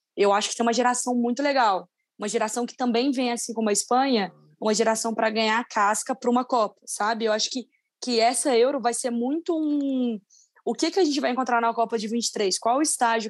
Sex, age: female, 10-29